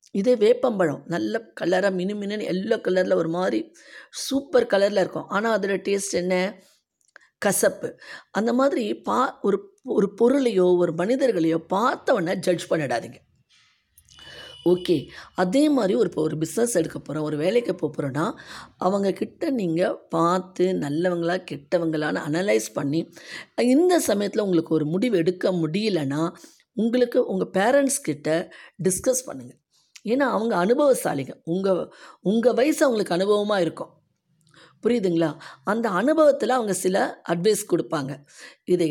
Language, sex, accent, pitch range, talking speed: Tamil, female, native, 165-230 Hz, 115 wpm